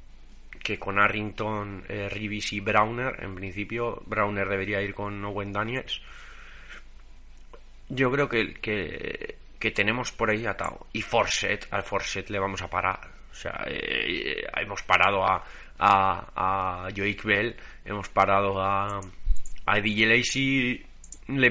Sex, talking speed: male, 140 wpm